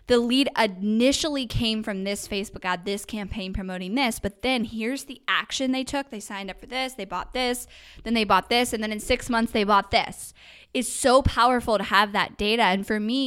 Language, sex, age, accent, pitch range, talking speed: English, female, 10-29, American, 200-245 Hz, 220 wpm